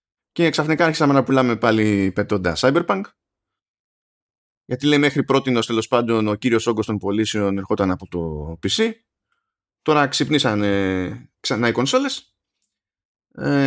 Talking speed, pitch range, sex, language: 130 wpm, 110-140 Hz, male, Greek